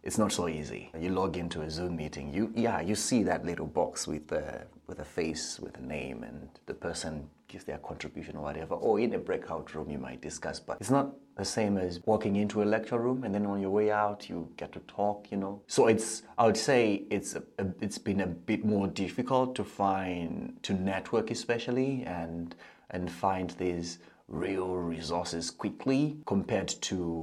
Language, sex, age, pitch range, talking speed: English, male, 30-49, 90-115 Hz, 205 wpm